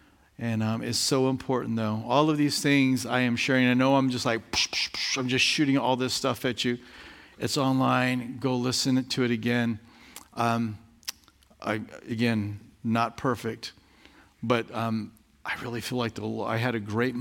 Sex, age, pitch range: male, 50-69, 110-130 Hz